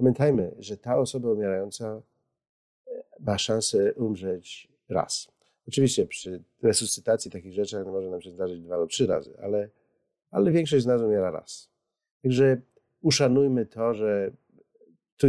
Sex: male